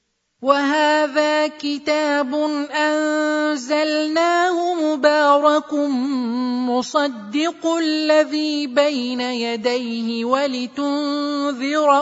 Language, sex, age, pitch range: Arabic, male, 30-49, 240-300 Hz